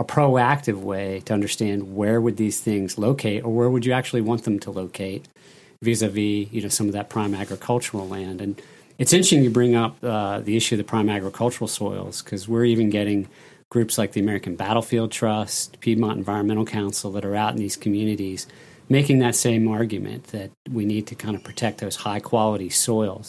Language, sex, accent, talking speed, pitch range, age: English, male, American, 195 wpm, 100-120 Hz, 40-59